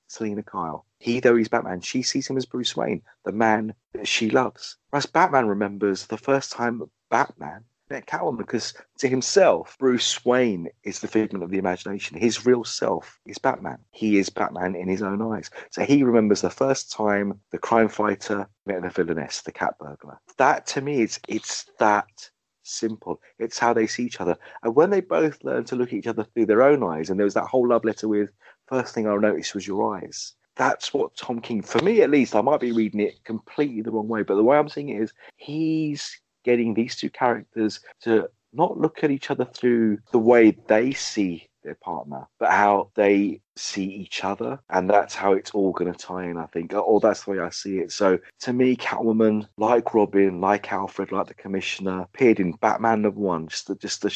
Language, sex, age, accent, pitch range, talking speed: English, male, 30-49, British, 100-120 Hz, 215 wpm